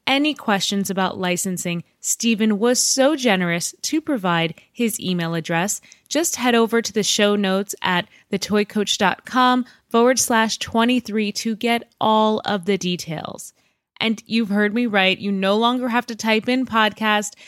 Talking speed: 150 wpm